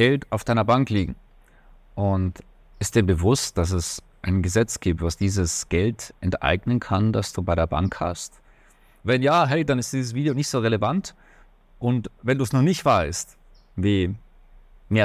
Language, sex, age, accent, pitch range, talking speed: German, male, 30-49, German, 95-130 Hz, 170 wpm